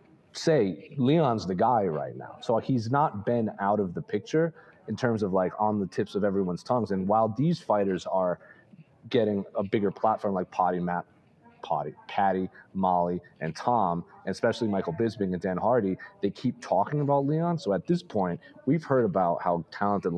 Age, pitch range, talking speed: 30-49, 95-120 Hz, 185 wpm